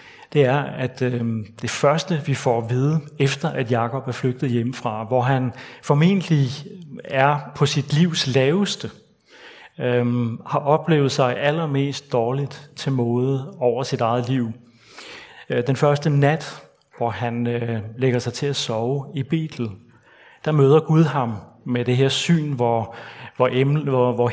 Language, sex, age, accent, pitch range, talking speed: Danish, male, 30-49, native, 120-145 Hz, 135 wpm